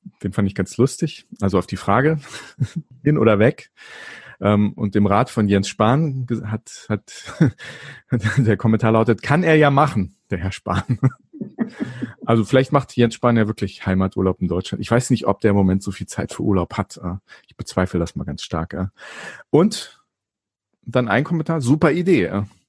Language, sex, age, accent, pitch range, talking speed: German, male, 30-49, German, 100-125 Hz, 170 wpm